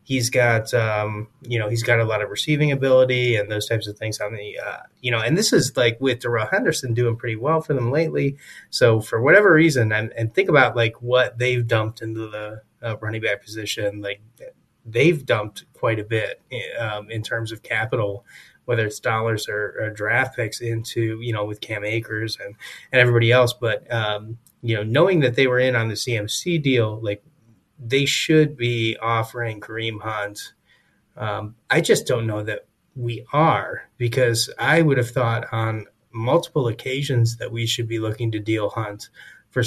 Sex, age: male, 20-39